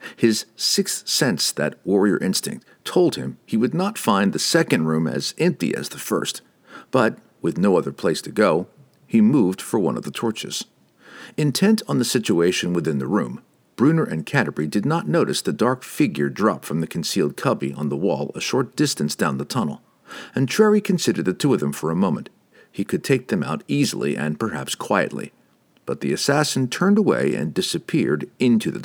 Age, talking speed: 50-69, 190 wpm